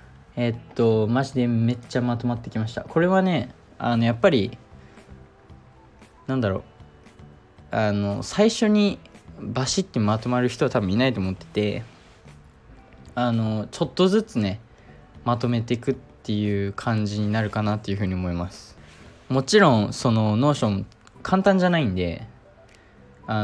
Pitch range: 100-125 Hz